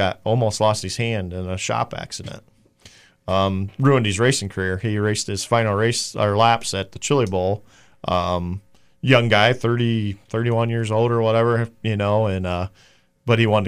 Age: 40-59